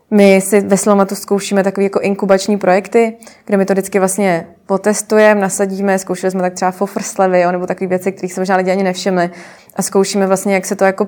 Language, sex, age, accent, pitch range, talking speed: Czech, female, 20-39, native, 185-200 Hz, 195 wpm